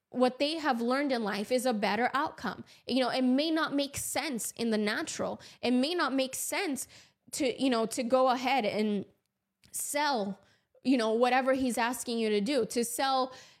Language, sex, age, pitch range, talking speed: English, female, 10-29, 235-280 Hz, 190 wpm